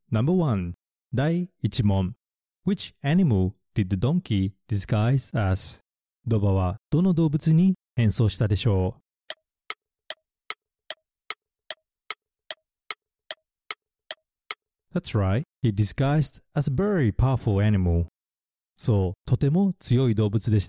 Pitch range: 100-145 Hz